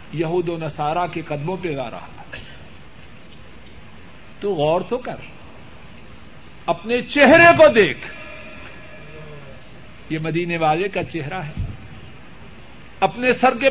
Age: 60-79